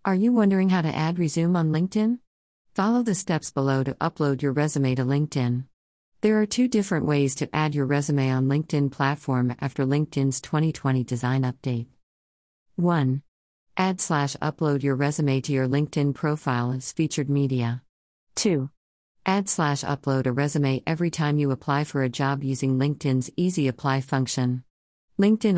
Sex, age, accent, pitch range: female, 50-69, American, 130-155 Hz